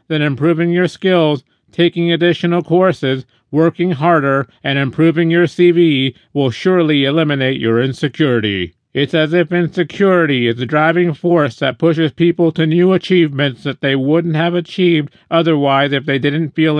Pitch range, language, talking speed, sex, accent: 130-170 Hz, English, 150 wpm, male, American